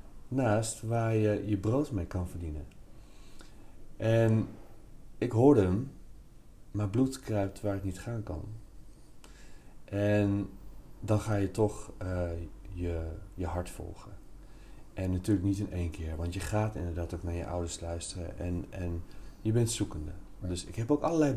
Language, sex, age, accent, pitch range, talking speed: Dutch, male, 30-49, Dutch, 90-110 Hz, 155 wpm